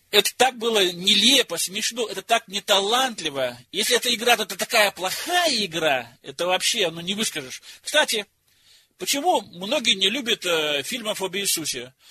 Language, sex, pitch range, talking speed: Russian, male, 180-245 Hz, 155 wpm